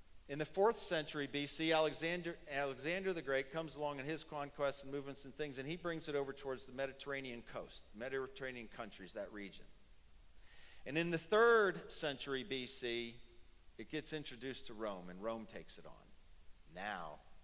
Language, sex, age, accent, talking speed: English, male, 40-59, American, 165 wpm